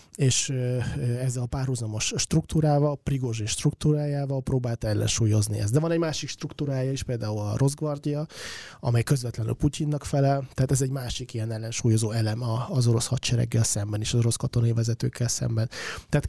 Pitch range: 110-135 Hz